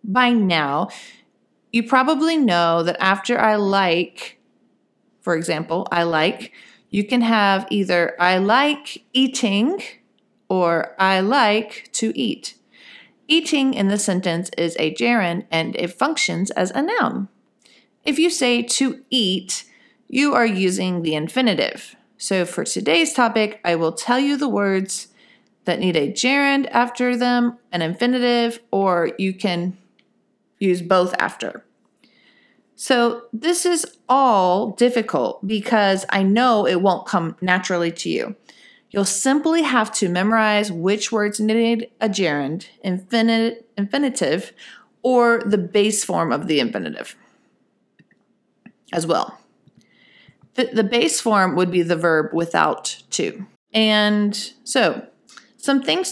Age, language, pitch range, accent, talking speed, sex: 40-59, English, 185-245 Hz, American, 130 wpm, female